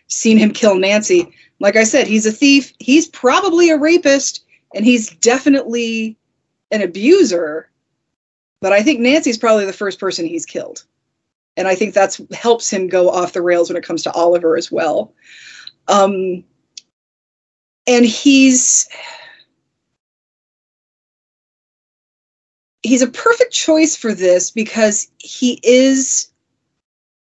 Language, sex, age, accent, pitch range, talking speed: English, female, 30-49, American, 195-265 Hz, 130 wpm